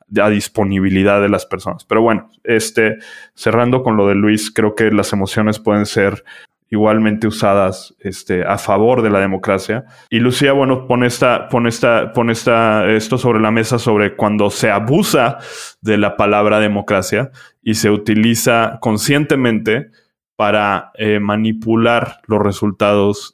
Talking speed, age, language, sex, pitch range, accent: 140 wpm, 20-39, Spanish, male, 105-115 Hz, Mexican